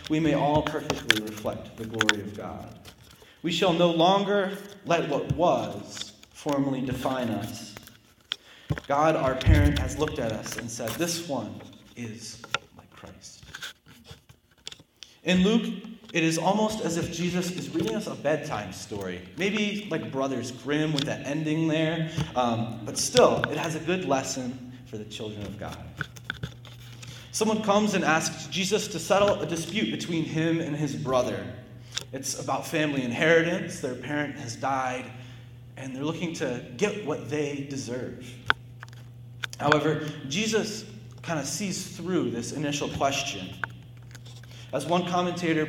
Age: 30-49